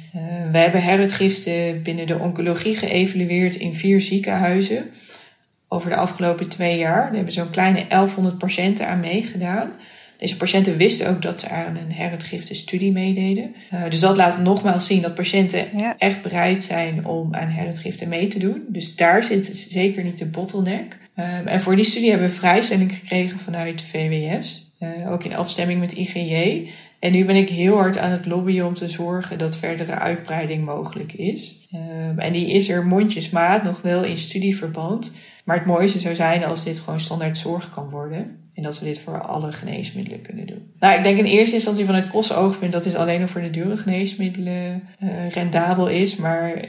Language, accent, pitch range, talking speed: Dutch, Dutch, 170-195 Hz, 180 wpm